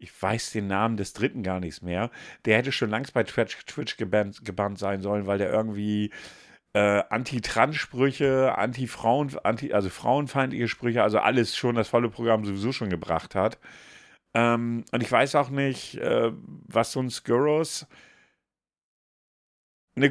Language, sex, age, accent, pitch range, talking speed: German, male, 50-69, German, 115-165 Hz, 155 wpm